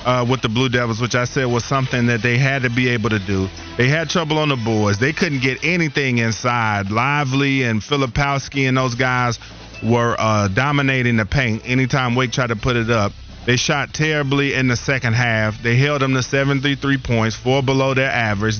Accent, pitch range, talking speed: American, 115-145 Hz, 205 wpm